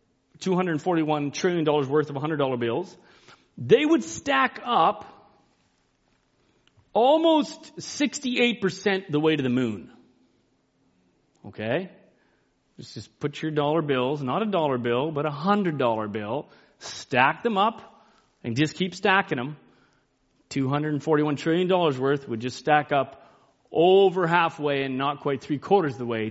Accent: American